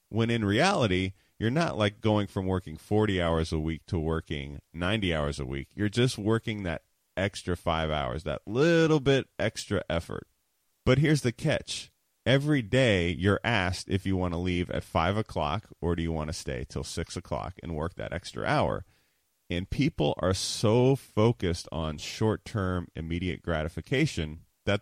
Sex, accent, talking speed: male, American, 170 wpm